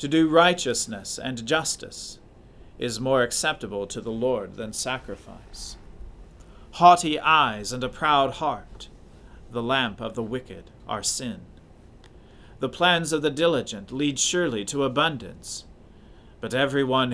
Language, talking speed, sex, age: English, 130 wpm, male, 40-59